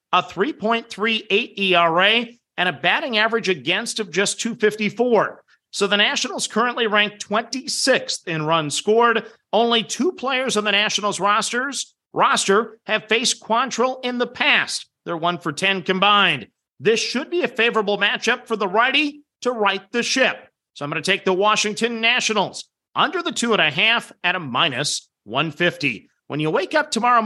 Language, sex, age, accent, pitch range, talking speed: English, male, 40-59, American, 185-235 Hz, 165 wpm